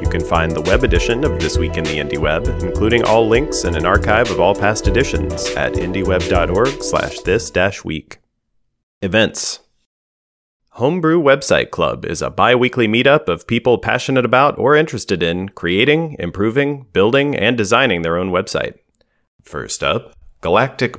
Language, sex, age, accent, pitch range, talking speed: English, male, 30-49, American, 85-115 Hz, 150 wpm